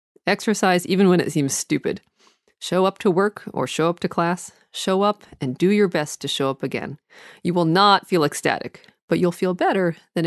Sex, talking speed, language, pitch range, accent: female, 205 wpm, English, 150-210 Hz, American